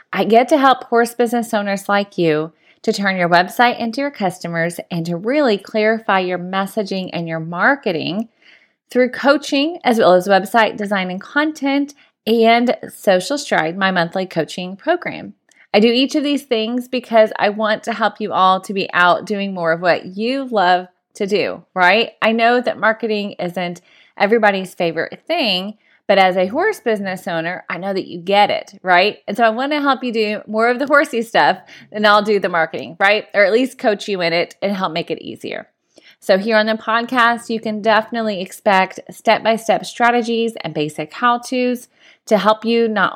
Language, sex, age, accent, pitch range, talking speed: English, female, 30-49, American, 185-235 Hz, 190 wpm